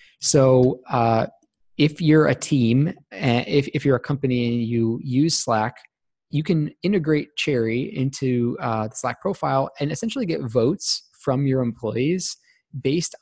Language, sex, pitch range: English, male, 125-155 Hz